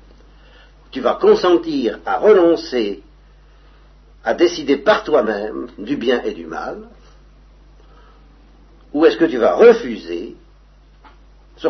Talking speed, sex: 110 wpm, male